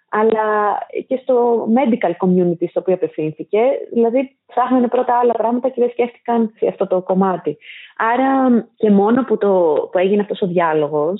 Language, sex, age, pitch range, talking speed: Greek, female, 30-49, 190-245 Hz, 150 wpm